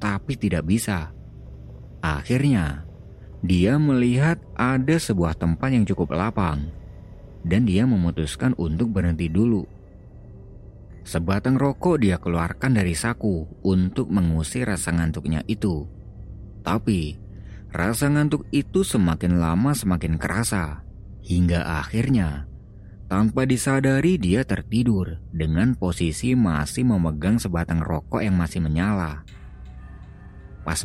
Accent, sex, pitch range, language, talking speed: native, male, 80-115 Hz, Indonesian, 105 wpm